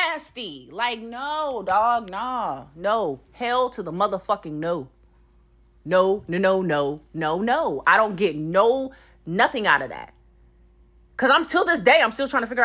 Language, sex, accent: English, female, American